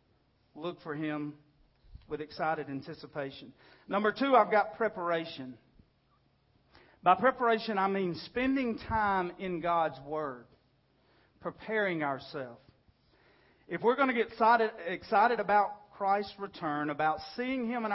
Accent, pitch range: American, 150-205 Hz